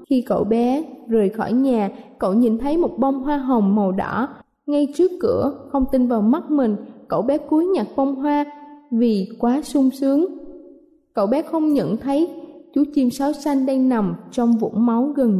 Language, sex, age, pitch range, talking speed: Vietnamese, female, 20-39, 225-285 Hz, 185 wpm